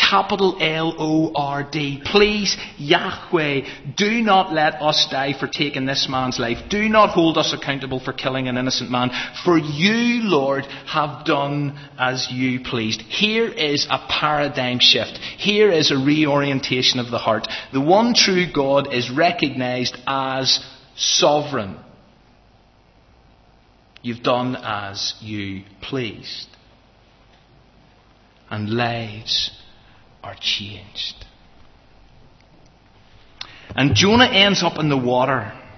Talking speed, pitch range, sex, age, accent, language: 120 wpm, 120-155 Hz, male, 30-49, British, English